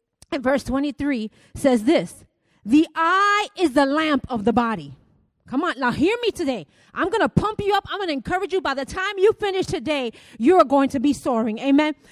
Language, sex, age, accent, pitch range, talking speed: English, female, 30-49, American, 245-325 Hz, 210 wpm